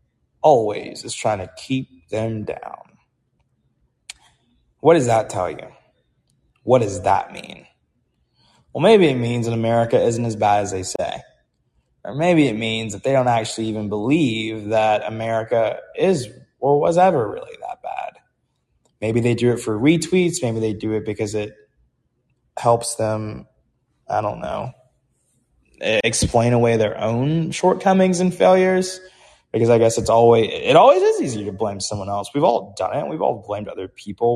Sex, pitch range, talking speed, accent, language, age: male, 110-180 Hz, 160 wpm, American, English, 20-39